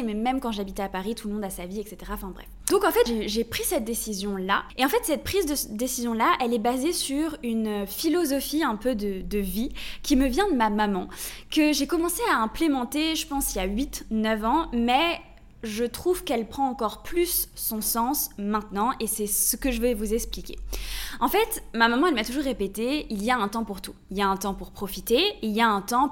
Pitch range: 205-280 Hz